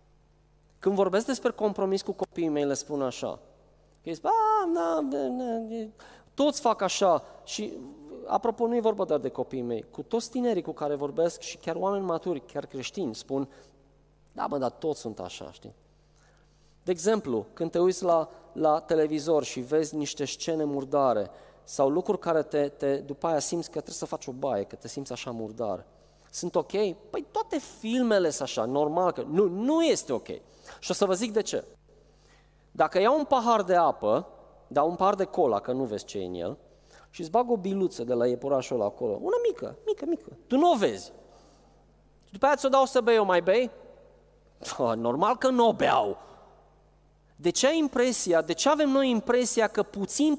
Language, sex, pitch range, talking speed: Romanian, male, 145-230 Hz, 185 wpm